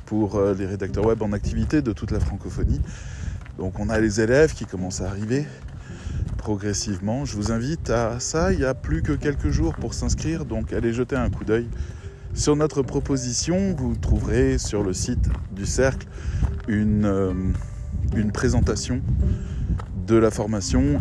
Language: French